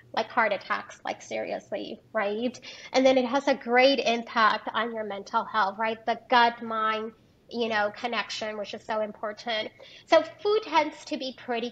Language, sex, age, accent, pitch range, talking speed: English, female, 30-49, American, 225-280 Hz, 175 wpm